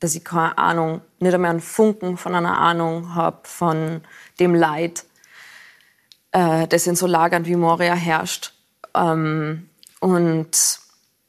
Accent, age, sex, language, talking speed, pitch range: German, 20-39, female, German, 135 wpm, 175-205 Hz